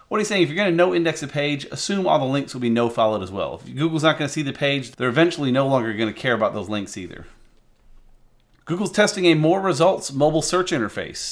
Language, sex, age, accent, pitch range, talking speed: English, male, 40-59, American, 120-160 Hz, 245 wpm